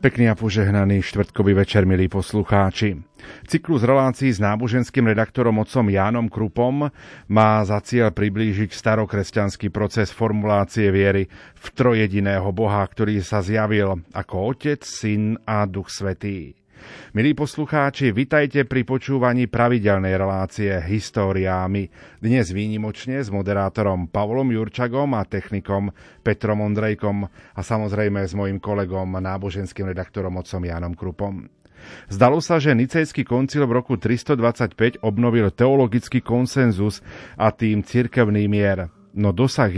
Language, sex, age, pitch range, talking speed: Slovak, male, 40-59, 100-120 Hz, 120 wpm